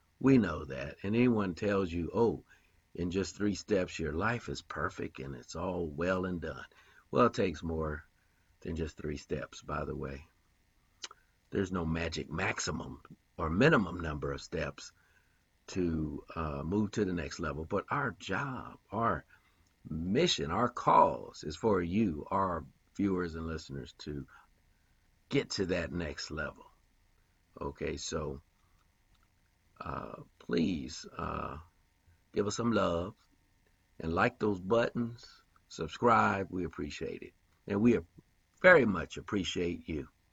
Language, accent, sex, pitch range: English, American, male, 80-95 Hz